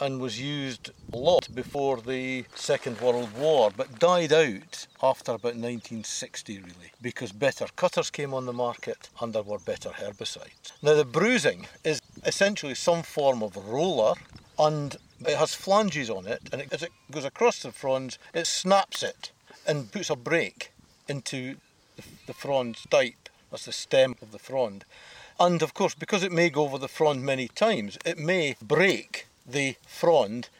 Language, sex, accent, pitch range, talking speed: English, male, British, 120-160 Hz, 165 wpm